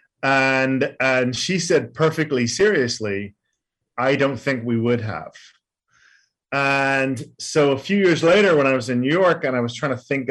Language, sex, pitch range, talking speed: English, male, 115-135 Hz, 175 wpm